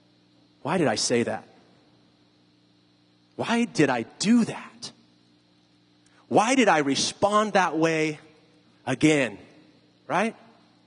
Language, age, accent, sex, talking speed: English, 30-49, American, male, 100 wpm